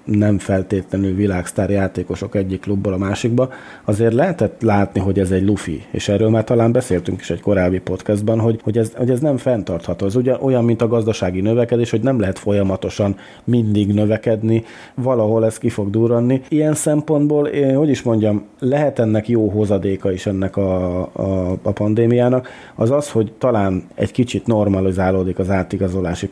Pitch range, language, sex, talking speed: 95-115 Hz, Hungarian, male, 165 wpm